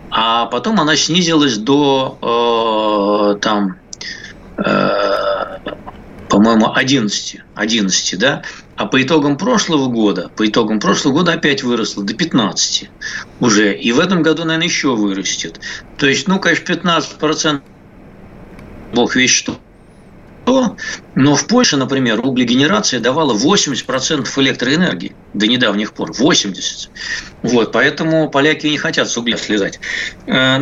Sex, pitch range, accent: male, 110-160 Hz, native